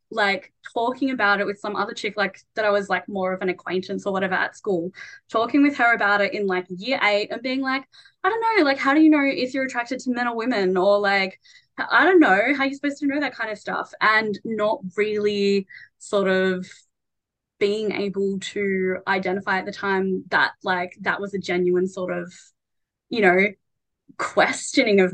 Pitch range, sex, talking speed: 185-215 Hz, female, 205 wpm